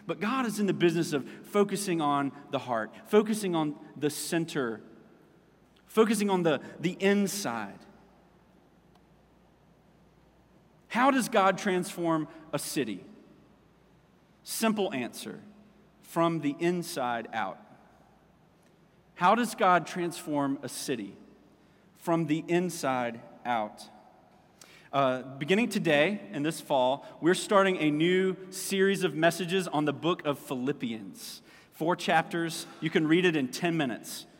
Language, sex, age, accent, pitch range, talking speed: English, male, 40-59, American, 145-185 Hz, 120 wpm